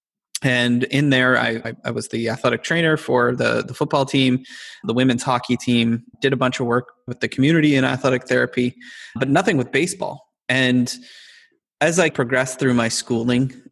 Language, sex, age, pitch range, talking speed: English, male, 20-39, 120-140 Hz, 175 wpm